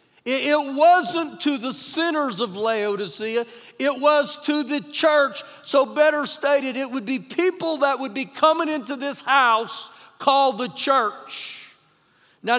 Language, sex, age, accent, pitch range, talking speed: English, male, 50-69, American, 235-290 Hz, 145 wpm